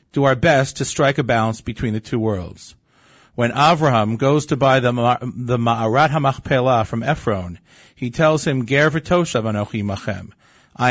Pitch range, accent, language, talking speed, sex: 115-150 Hz, American, English, 145 wpm, male